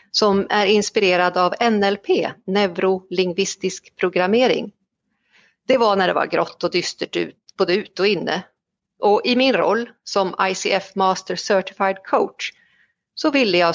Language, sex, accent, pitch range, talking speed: Swedish, female, native, 170-210 Hz, 140 wpm